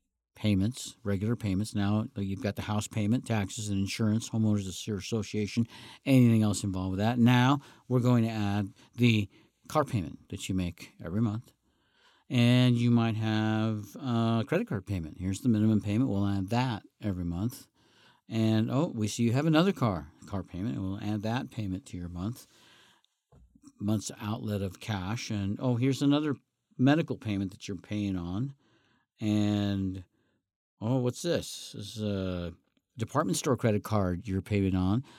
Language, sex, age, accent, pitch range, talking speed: English, male, 50-69, American, 100-125 Hz, 160 wpm